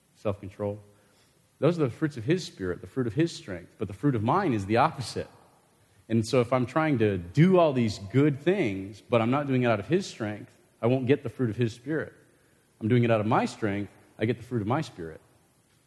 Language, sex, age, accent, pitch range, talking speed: English, male, 40-59, American, 110-145 Hz, 240 wpm